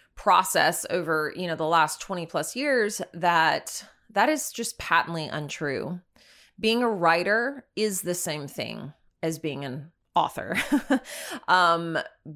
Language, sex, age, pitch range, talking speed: English, female, 20-39, 160-205 Hz, 130 wpm